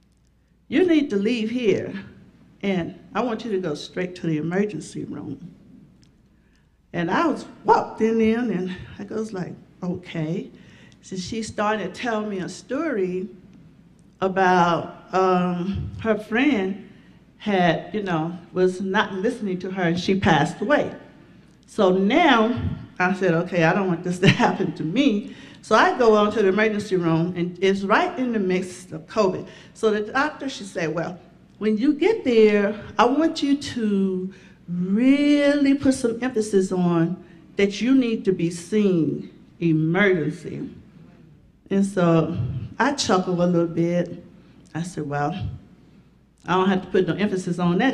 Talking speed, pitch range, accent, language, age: 155 wpm, 175-220 Hz, American, English, 50-69